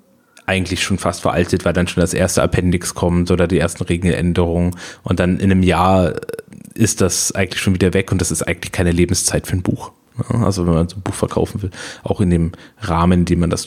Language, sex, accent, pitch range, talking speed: German, male, German, 95-120 Hz, 225 wpm